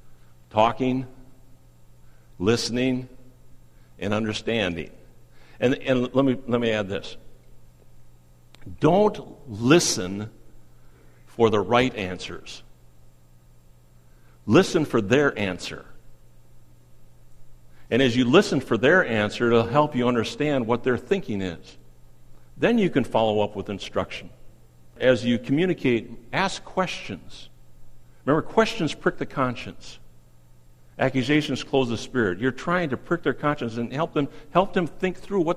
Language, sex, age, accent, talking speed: English, male, 60-79, American, 120 wpm